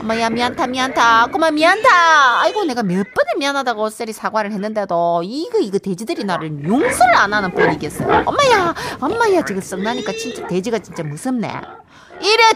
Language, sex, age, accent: Korean, female, 40-59, native